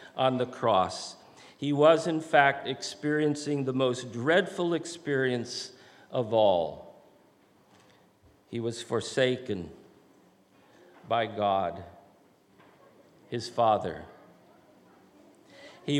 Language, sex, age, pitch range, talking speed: English, male, 50-69, 125-170 Hz, 85 wpm